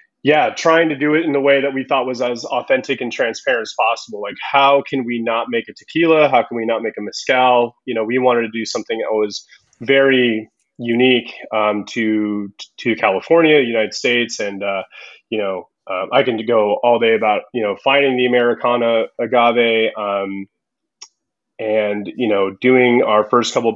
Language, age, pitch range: English, 20-39, 110-135 Hz